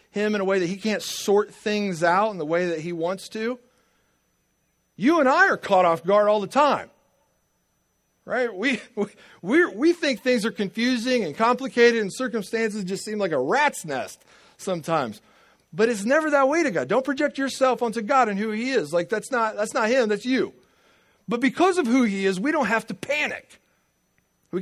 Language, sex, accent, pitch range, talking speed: English, male, American, 170-245 Hz, 200 wpm